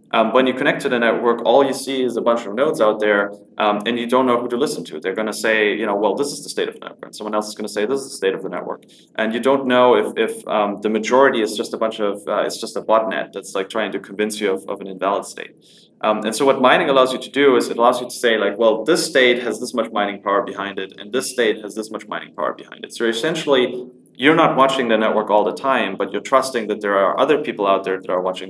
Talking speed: 300 wpm